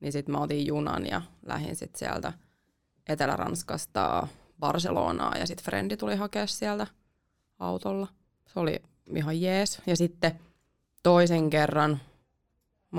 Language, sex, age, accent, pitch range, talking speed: Finnish, female, 20-39, native, 145-180 Hz, 120 wpm